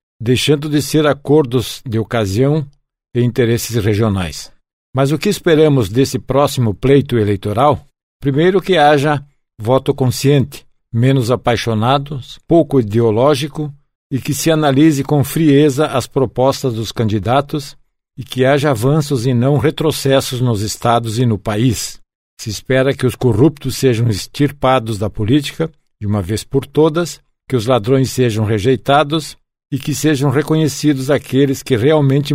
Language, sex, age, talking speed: Portuguese, male, 60-79, 135 wpm